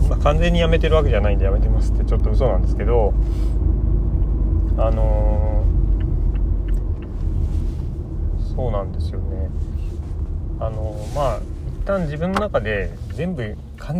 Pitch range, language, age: 75-100 Hz, Japanese, 40-59